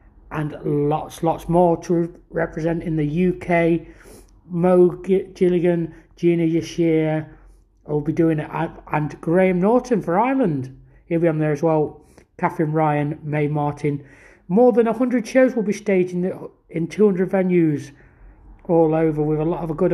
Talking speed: 145 wpm